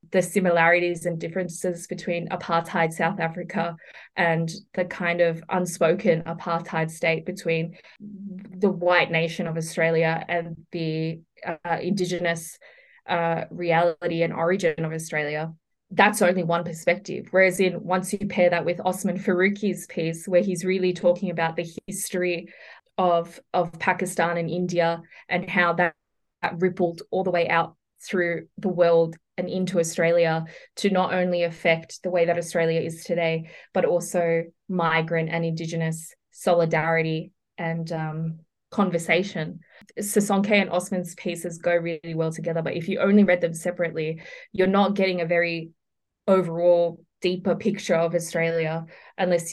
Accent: Australian